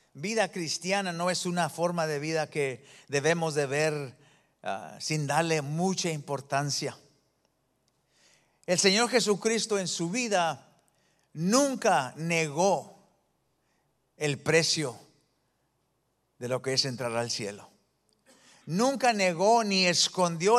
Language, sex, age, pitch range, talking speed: English, male, 50-69, 165-215 Hz, 110 wpm